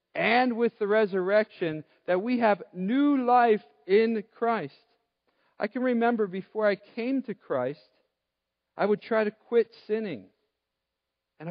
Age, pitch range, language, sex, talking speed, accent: 50-69, 145-215 Hz, English, male, 135 wpm, American